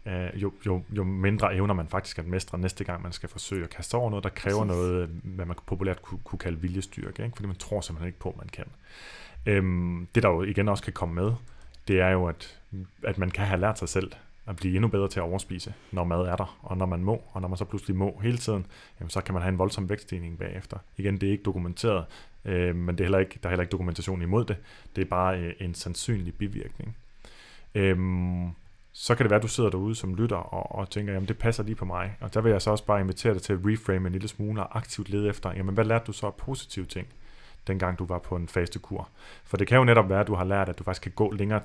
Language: Danish